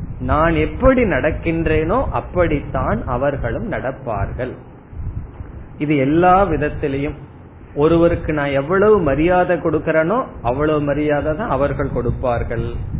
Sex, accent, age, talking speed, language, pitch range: male, native, 30-49, 85 wpm, Tamil, 125-165 Hz